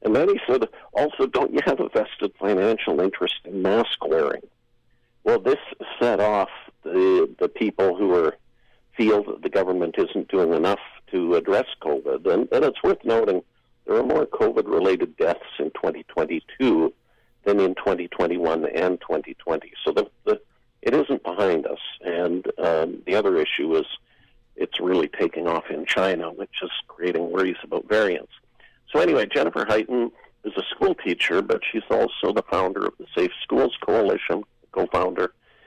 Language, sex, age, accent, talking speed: English, male, 50-69, American, 160 wpm